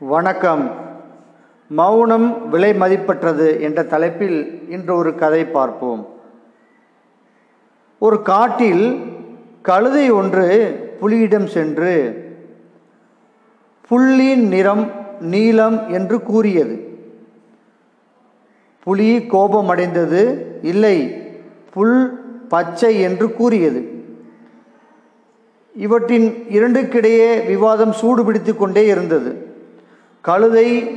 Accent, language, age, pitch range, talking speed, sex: native, Tamil, 50-69, 190-235 Hz, 70 wpm, male